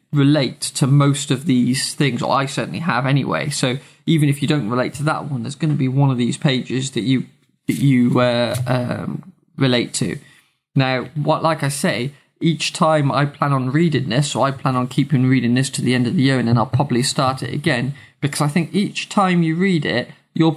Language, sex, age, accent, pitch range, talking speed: English, male, 20-39, British, 130-155 Hz, 225 wpm